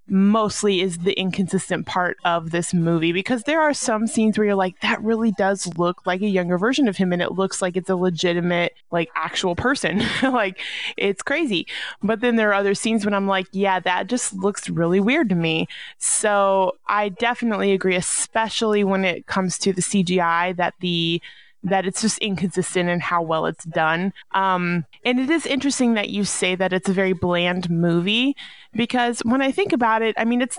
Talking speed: 200 wpm